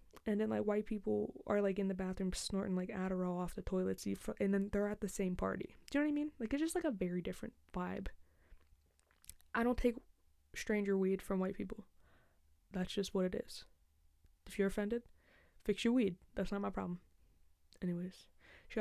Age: 20-39